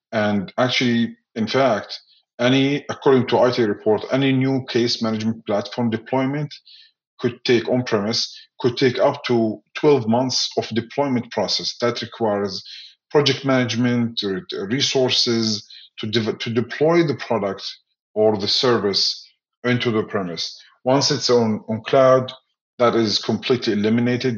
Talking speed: 135 wpm